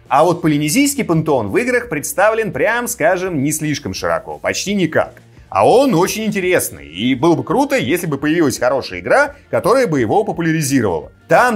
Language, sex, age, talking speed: Russian, male, 30-49, 165 wpm